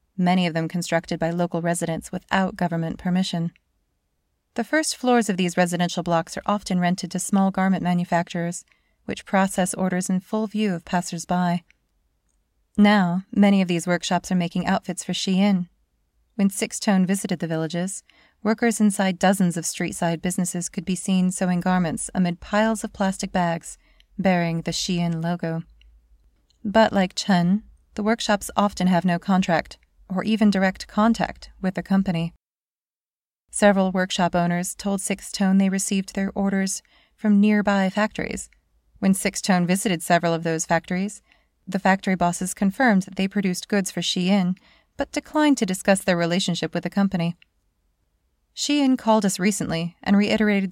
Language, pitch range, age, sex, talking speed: English, 175-200 Hz, 30-49, female, 155 wpm